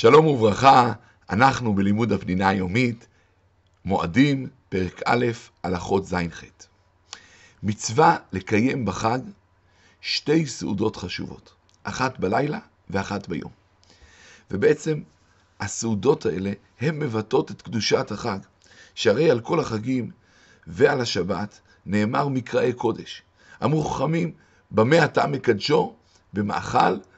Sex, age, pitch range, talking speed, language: male, 50-69, 95-130 Hz, 95 wpm, Hebrew